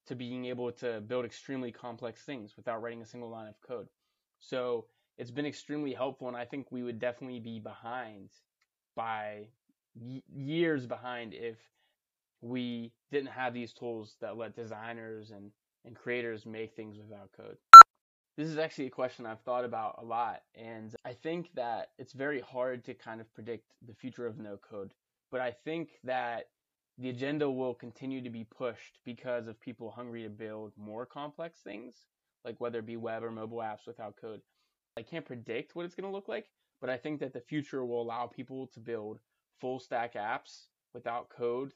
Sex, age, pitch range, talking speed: male, 20-39, 115-130 Hz, 185 wpm